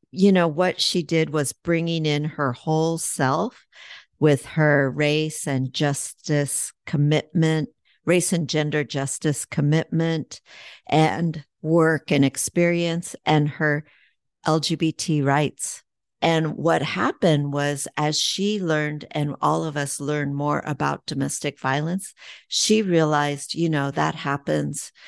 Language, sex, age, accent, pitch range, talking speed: English, female, 50-69, American, 145-165 Hz, 125 wpm